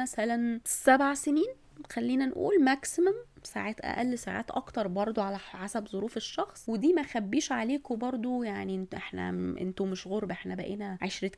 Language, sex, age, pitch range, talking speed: Arabic, female, 20-39, 205-280 Hz, 155 wpm